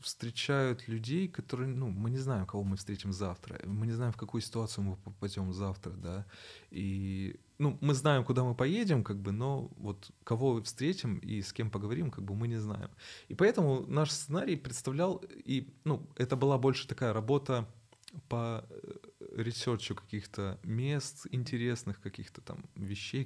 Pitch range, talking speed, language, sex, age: 100-135 Hz, 165 wpm, Russian, male, 20-39